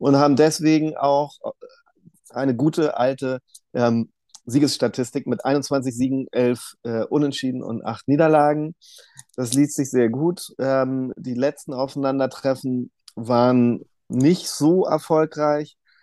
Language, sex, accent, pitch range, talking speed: German, male, German, 120-145 Hz, 115 wpm